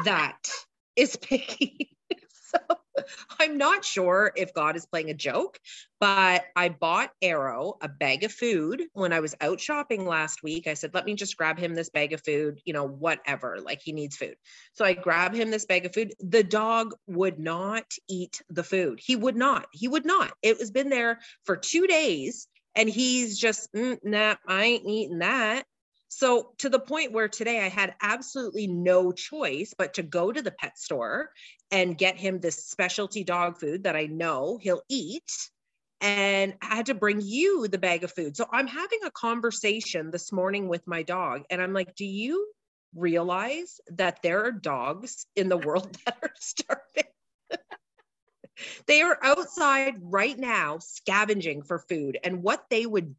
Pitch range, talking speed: 175-255 Hz, 180 wpm